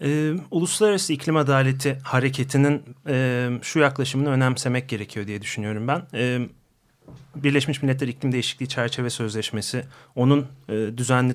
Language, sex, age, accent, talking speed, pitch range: Turkish, male, 40-59, native, 120 wpm, 115-135 Hz